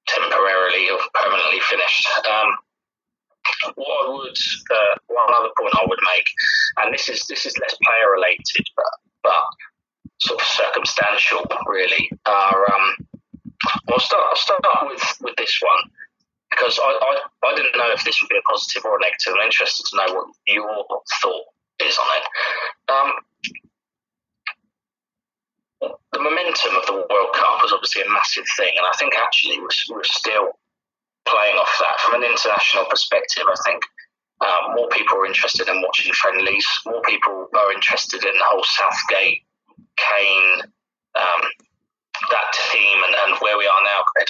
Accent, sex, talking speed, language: British, male, 160 wpm, English